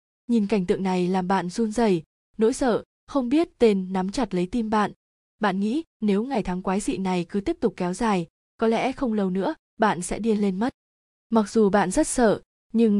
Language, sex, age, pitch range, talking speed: Vietnamese, female, 20-39, 185-230 Hz, 215 wpm